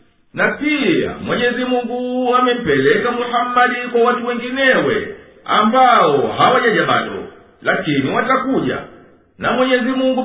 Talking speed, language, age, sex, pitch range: 95 wpm, Swahili, 50-69, male, 235-250 Hz